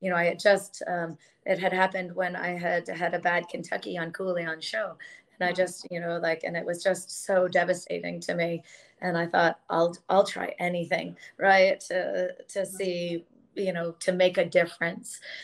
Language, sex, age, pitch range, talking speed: English, female, 30-49, 175-200 Hz, 200 wpm